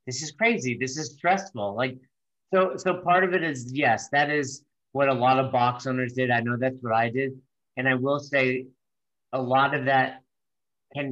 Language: English